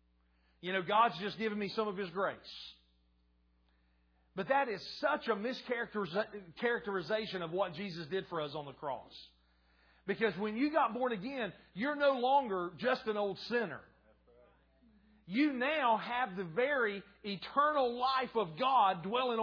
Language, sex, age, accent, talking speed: English, male, 40-59, American, 150 wpm